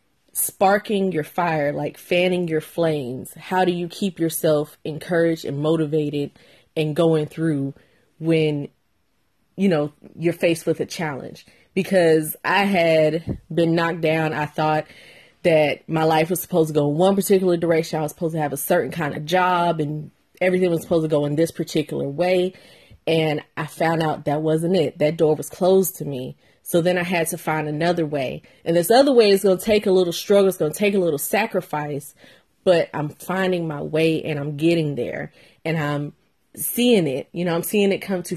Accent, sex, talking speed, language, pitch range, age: American, female, 190 wpm, English, 155-180 Hz, 30-49